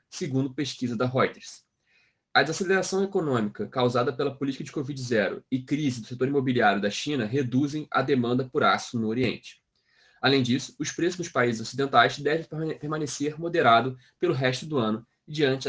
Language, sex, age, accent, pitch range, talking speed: Portuguese, male, 20-39, Brazilian, 125-160 Hz, 155 wpm